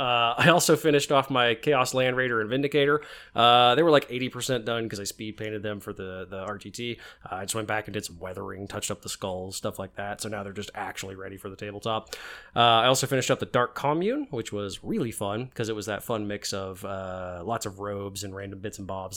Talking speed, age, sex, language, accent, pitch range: 245 wpm, 20-39, male, English, American, 105-125 Hz